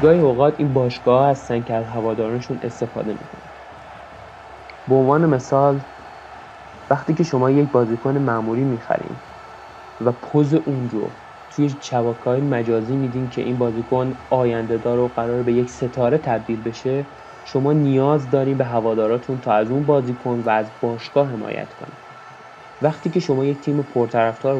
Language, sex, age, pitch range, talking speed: Persian, male, 20-39, 115-135 Hz, 150 wpm